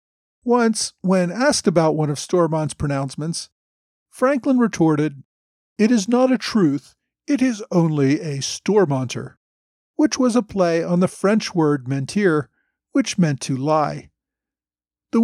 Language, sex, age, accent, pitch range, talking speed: English, male, 50-69, American, 145-210 Hz, 135 wpm